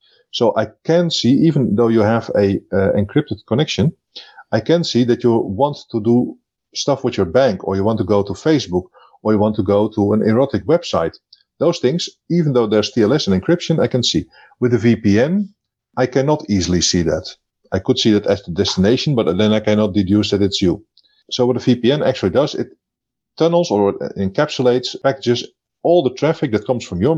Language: English